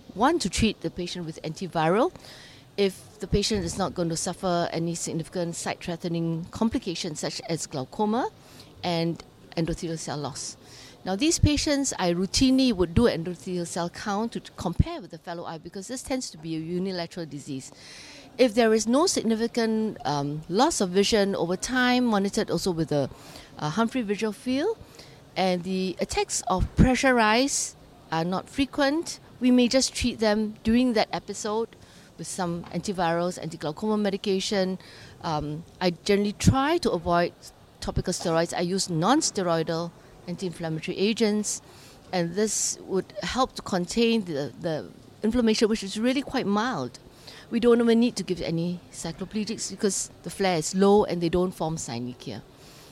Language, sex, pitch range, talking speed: English, female, 165-220 Hz, 155 wpm